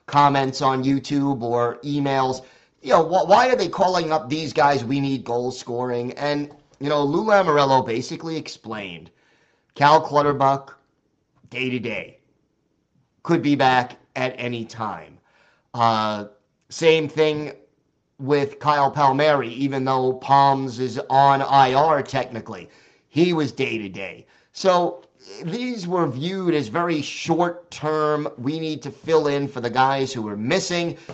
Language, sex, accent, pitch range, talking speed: English, male, American, 130-155 Hz, 140 wpm